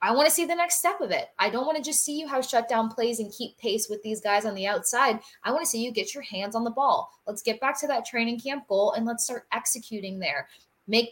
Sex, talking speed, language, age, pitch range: female, 285 wpm, English, 20-39, 195-230 Hz